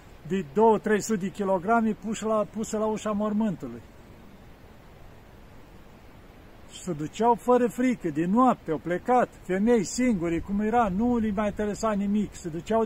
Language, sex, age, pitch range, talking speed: Romanian, male, 50-69, 170-225 Hz, 135 wpm